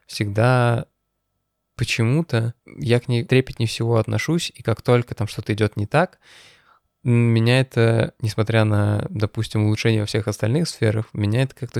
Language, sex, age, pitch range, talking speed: Russian, male, 20-39, 110-125 Hz, 155 wpm